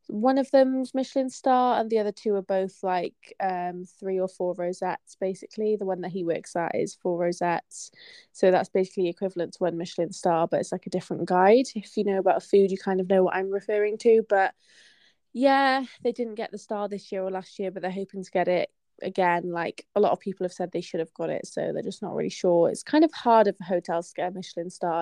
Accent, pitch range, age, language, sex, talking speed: British, 185-220 Hz, 20-39, English, female, 240 wpm